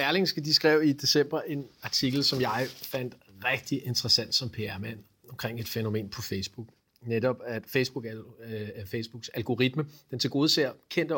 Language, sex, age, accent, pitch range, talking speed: English, male, 40-59, Danish, 125-155 Hz, 165 wpm